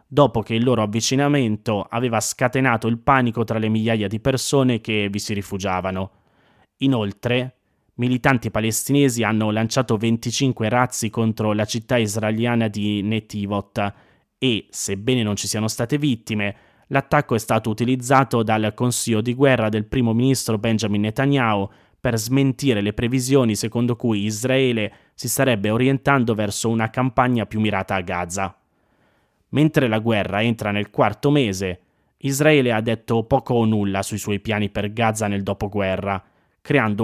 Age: 20-39